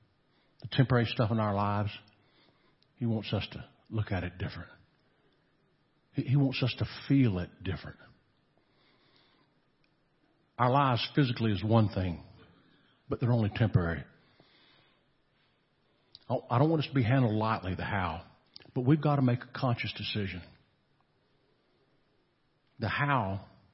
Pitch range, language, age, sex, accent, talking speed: 105-130 Hz, English, 50-69, male, American, 130 wpm